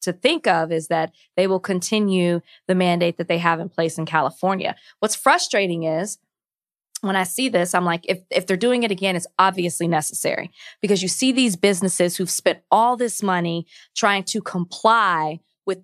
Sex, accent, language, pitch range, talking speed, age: female, American, English, 175-205 Hz, 185 wpm, 20-39